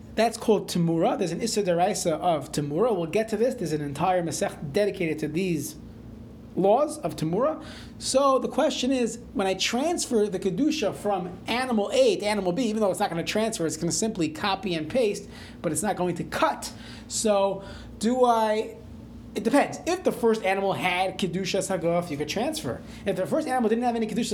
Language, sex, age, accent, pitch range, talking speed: English, male, 30-49, American, 170-235 Hz, 190 wpm